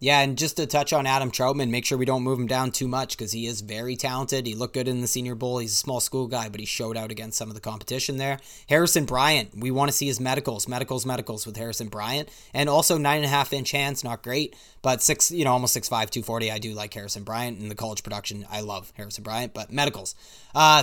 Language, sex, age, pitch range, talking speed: English, male, 20-39, 120-150 Hz, 265 wpm